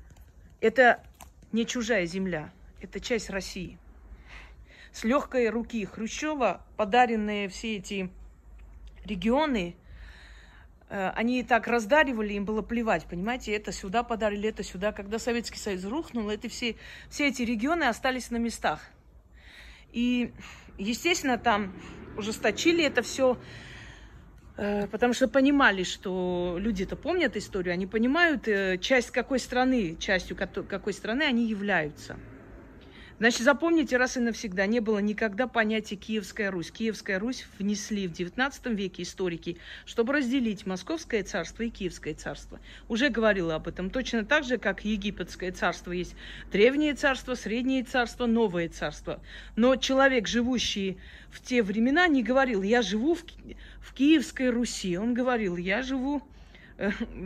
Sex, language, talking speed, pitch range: female, Russian, 130 wpm, 190-250 Hz